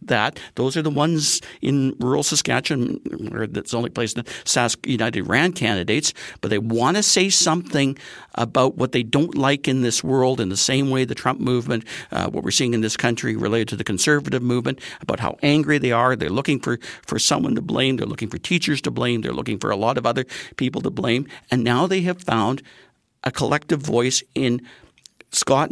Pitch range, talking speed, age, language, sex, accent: 120-150 Hz, 205 wpm, 50-69, English, male, American